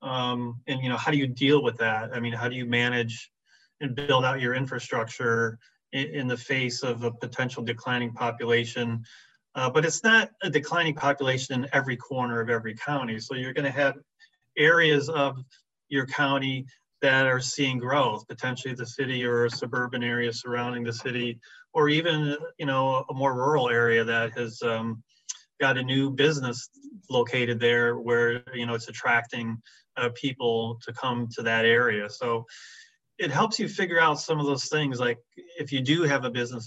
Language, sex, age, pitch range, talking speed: English, male, 30-49, 120-140 Hz, 185 wpm